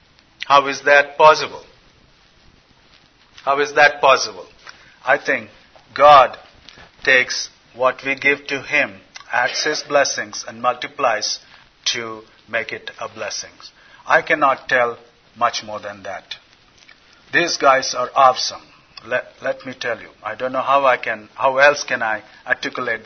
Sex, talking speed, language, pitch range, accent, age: male, 140 wpm, English, 130-155 Hz, Indian, 50-69